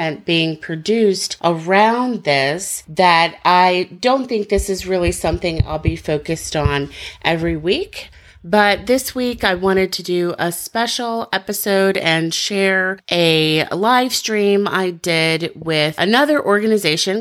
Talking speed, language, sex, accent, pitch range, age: 135 wpm, English, female, American, 160-205 Hz, 30-49